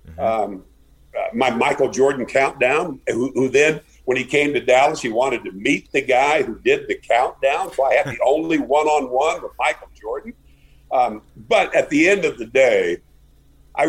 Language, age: English, 60-79